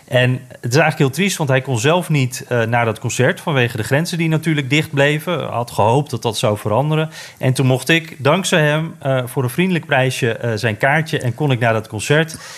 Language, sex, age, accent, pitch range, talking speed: Dutch, male, 40-59, Dutch, 115-140 Hz, 230 wpm